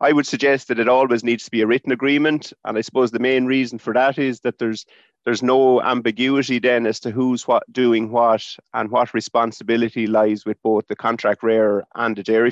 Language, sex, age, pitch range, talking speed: English, male, 30-49, 110-130 Hz, 215 wpm